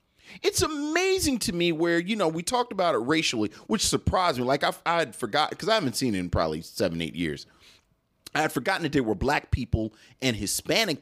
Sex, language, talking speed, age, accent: male, English, 220 wpm, 40-59, American